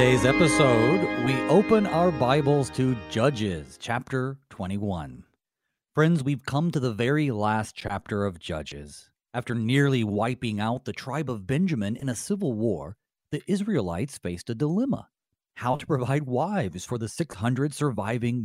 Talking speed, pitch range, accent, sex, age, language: 145 wpm, 105-150 Hz, American, male, 40-59, English